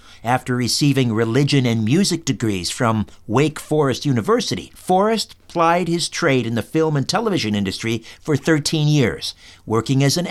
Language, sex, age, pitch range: English, male, 50-69, 115-155 Hz